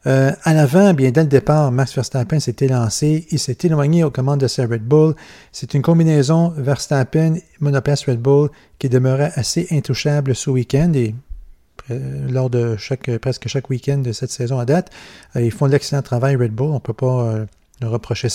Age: 40-59